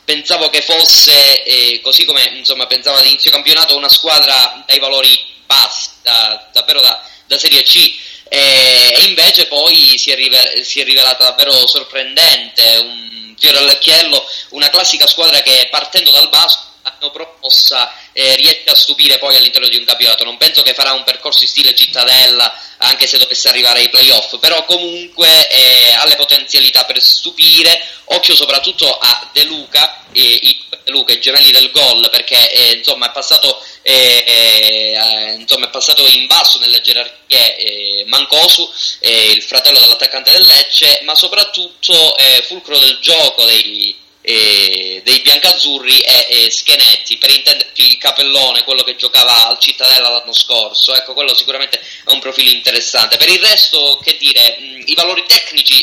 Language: Italian